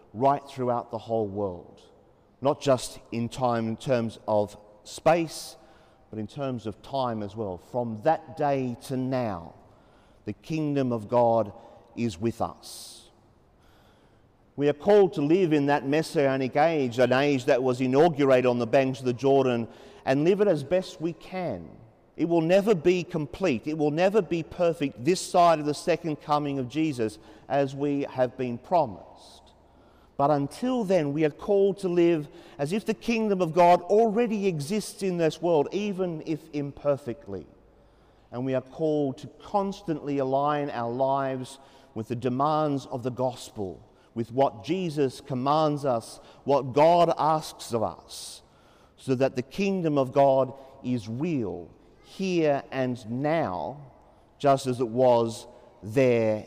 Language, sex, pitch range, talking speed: English, male, 120-160 Hz, 155 wpm